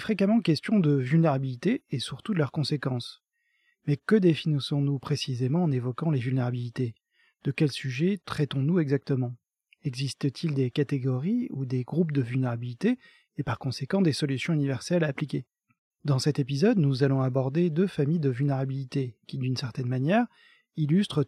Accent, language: French, French